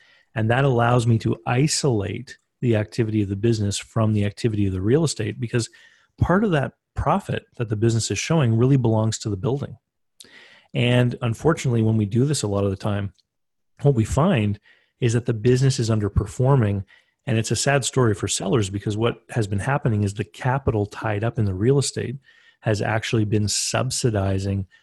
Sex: male